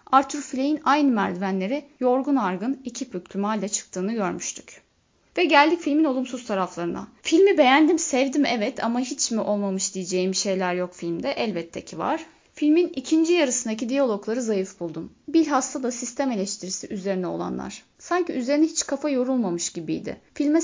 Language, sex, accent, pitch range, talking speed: Turkish, female, native, 205-285 Hz, 140 wpm